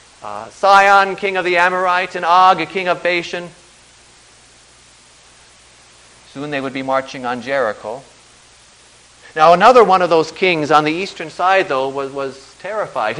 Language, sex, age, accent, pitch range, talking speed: English, male, 40-59, American, 120-200 Hz, 150 wpm